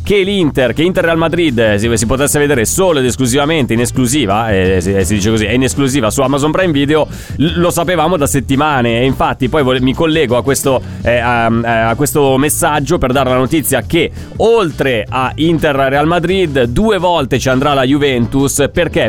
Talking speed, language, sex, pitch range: 200 wpm, Italian, male, 125-155 Hz